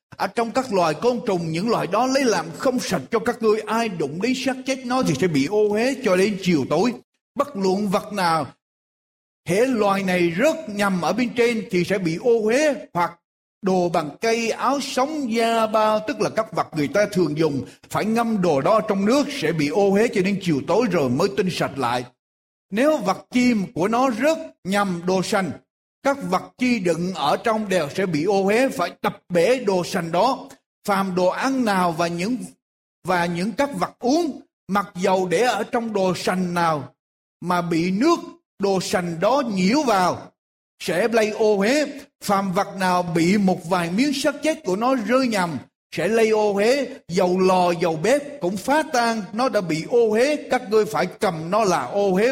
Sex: male